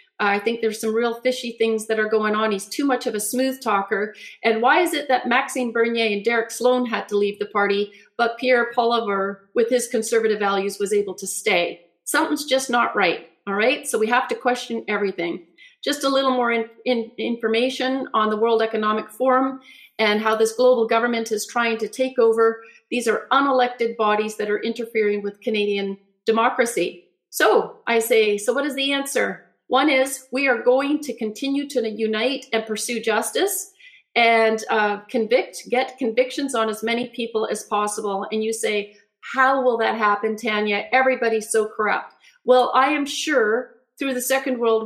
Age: 40-59